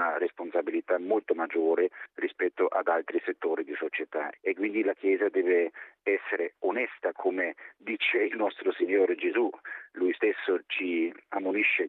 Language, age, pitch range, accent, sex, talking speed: Italian, 40-59, 335-425 Hz, native, male, 130 wpm